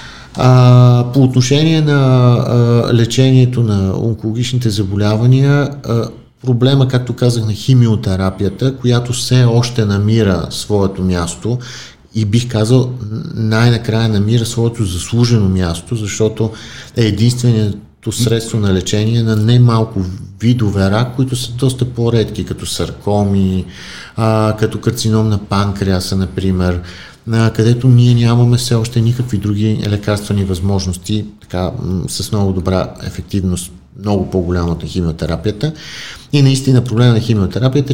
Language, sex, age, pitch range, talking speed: Bulgarian, male, 50-69, 100-120 Hz, 120 wpm